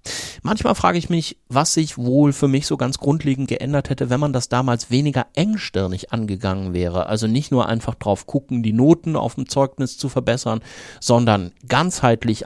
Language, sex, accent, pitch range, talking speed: German, male, German, 115-145 Hz, 180 wpm